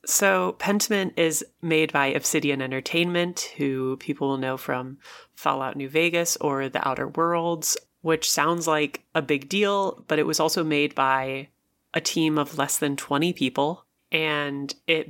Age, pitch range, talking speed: 30-49, 140-165 Hz, 160 wpm